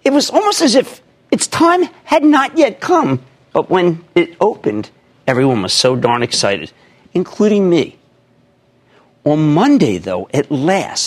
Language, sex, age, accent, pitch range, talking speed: English, male, 50-69, American, 120-195 Hz, 145 wpm